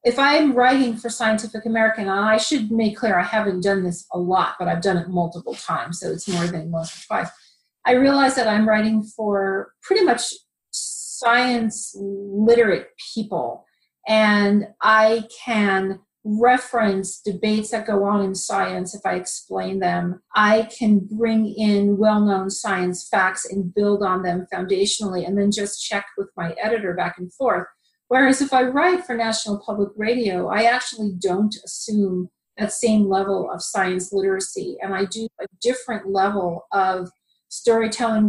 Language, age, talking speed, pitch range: English, 40-59, 160 wpm, 195-225 Hz